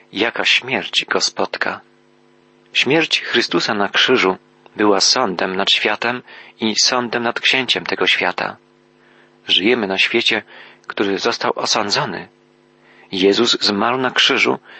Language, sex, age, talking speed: Polish, male, 40-59, 115 wpm